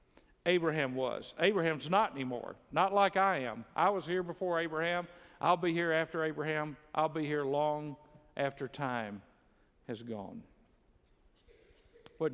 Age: 50-69